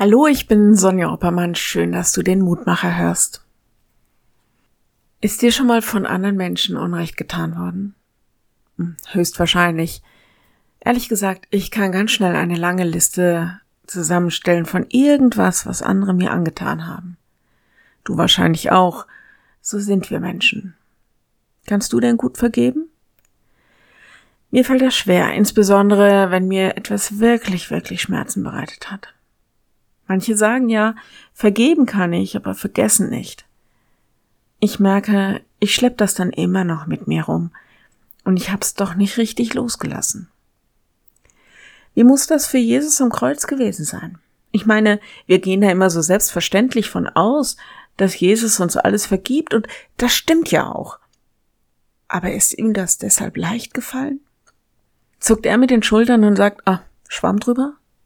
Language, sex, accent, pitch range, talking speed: German, female, German, 180-235 Hz, 145 wpm